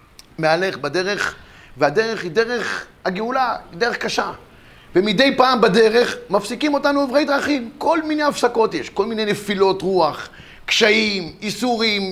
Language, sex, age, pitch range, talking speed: Hebrew, male, 30-49, 195-270 Hz, 130 wpm